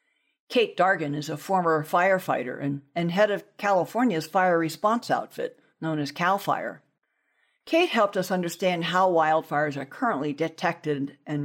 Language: English